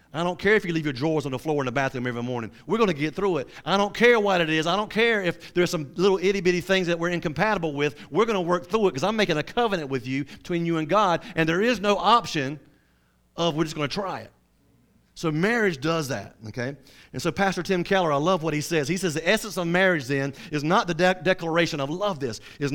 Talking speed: 265 wpm